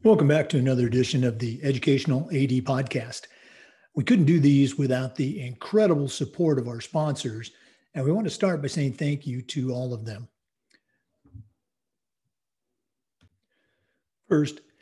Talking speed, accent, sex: 140 wpm, American, male